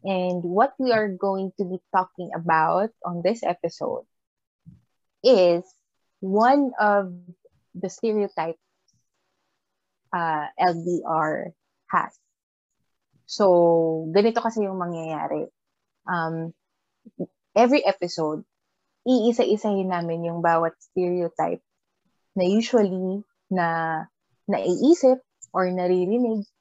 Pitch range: 170-210 Hz